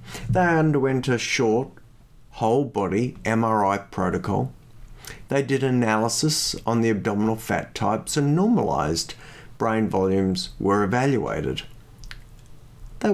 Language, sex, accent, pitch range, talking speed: English, male, Australian, 110-145 Hz, 100 wpm